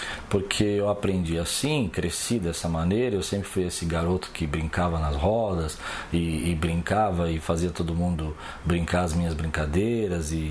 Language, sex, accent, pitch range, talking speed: Portuguese, male, Brazilian, 85-115 Hz, 160 wpm